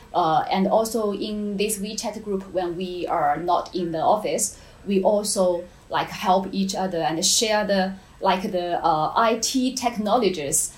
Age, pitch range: 30-49, 185-215 Hz